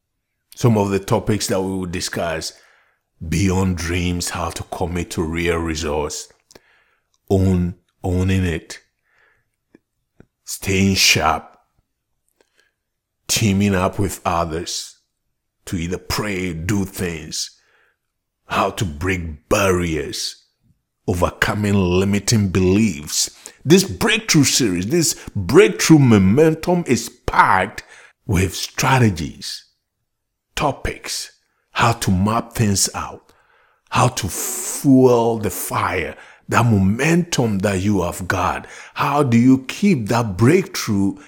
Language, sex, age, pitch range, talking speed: English, male, 60-79, 95-130 Hz, 100 wpm